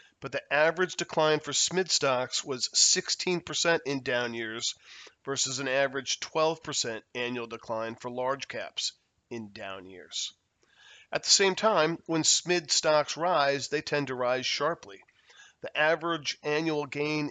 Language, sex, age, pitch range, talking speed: English, male, 40-59, 125-165 Hz, 140 wpm